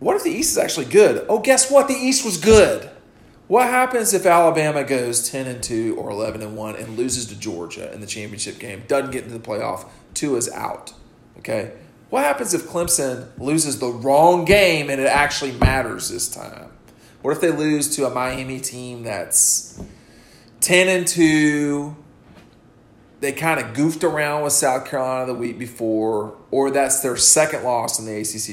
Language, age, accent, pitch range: English, 40-59, American, 115-150 Hz